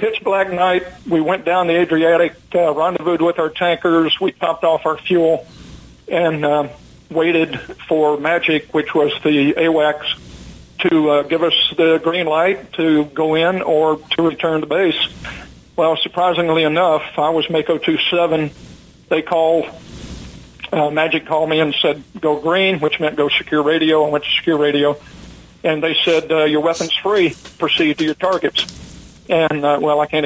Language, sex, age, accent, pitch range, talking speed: English, male, 50-69, American, 150-170 Hz, 165 wpm